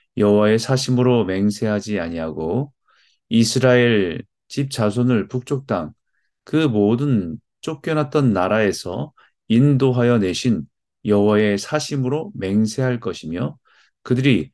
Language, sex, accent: Korean, male, native